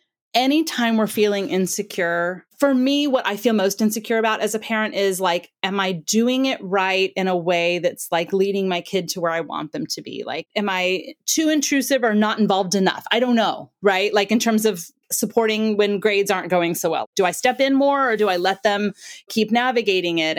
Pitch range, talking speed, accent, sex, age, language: 190-260 Hz, 220 wpm, American, female, 30-49, English